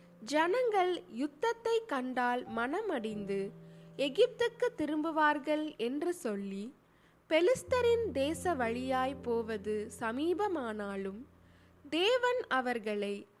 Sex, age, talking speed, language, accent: female, 20-39, 65 wpm, Tamil, native